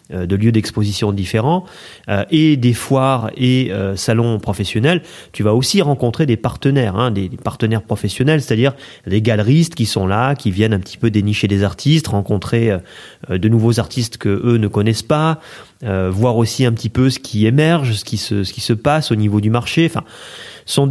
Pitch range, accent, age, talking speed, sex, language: 105-130 Hz, French, 30-49, 200 wpm, male, French